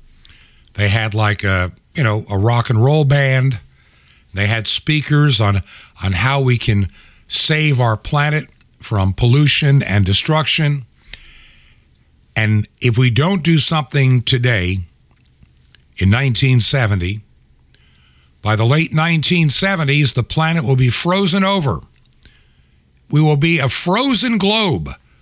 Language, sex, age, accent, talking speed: English, male, 60-79, American, 120 wpm